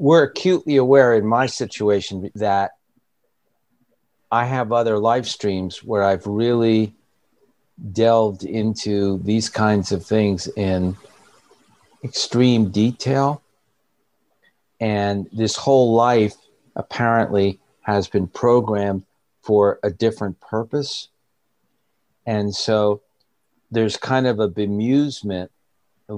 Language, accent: English, American